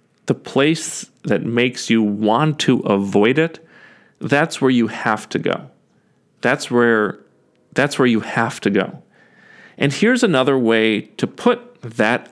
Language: English